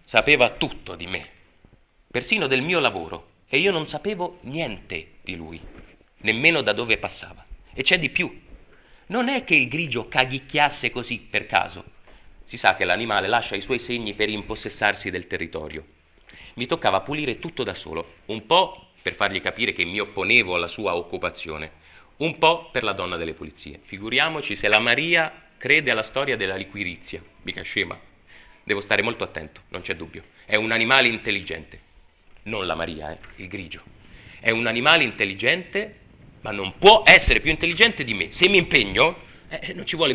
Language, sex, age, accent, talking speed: Italian, male, 30-49, native, 170 wpm